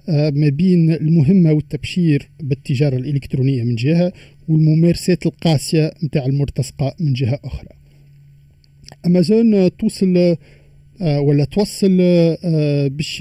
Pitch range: 145-175 Hz